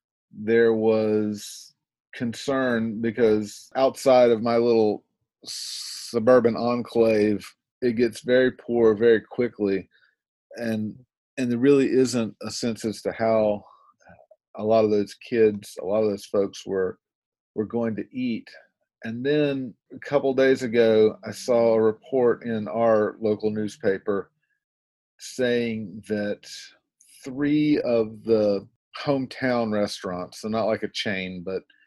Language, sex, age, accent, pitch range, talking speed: English, male, 40-59, American, 105-125 Hz, 130 wpm